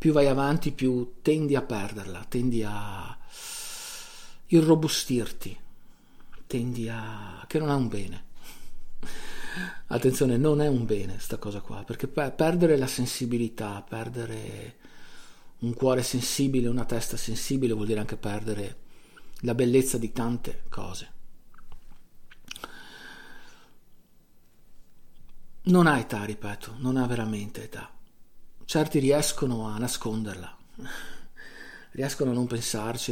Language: Italian